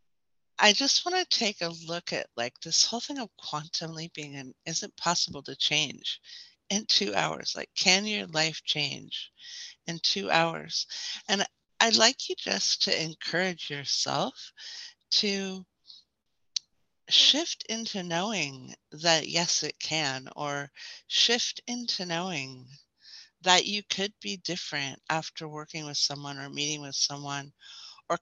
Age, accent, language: 60-79, American, English